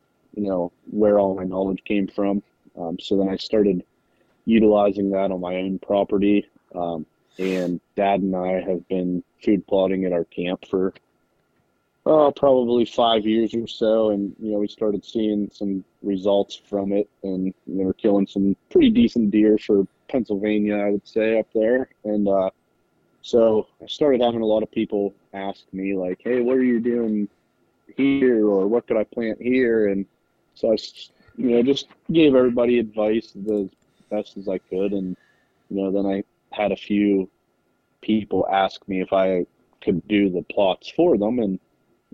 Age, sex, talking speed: 20-39, male, 175 wpm